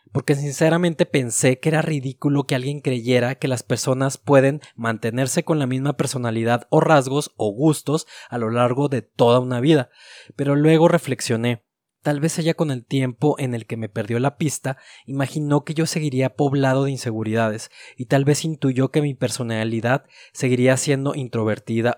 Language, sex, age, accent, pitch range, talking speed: Spanish, male, 20-39, Mexican, 120-150 Hz, 170 wpm